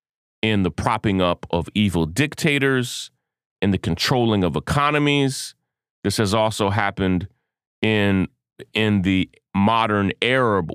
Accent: American